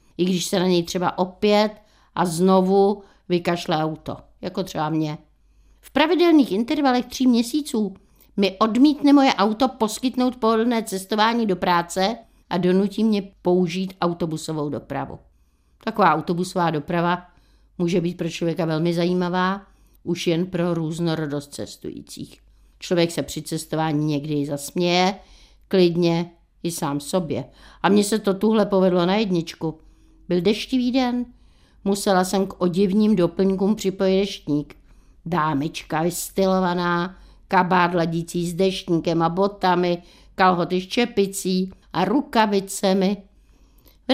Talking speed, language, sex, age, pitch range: 120 wpm, Czech, female, 50-69, 170-205 Hz